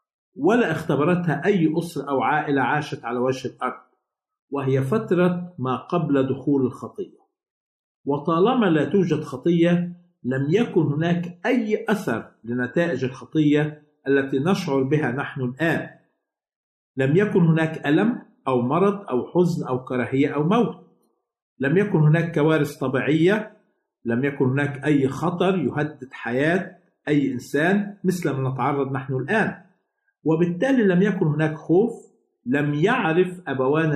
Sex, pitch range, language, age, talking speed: male, 135-180 Hz, Arabic, 50-69, 125 wpm